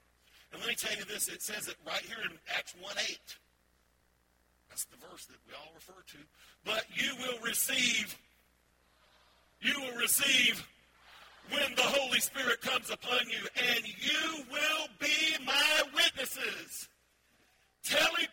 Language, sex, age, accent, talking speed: English, male, 50-69, American, 140 wpm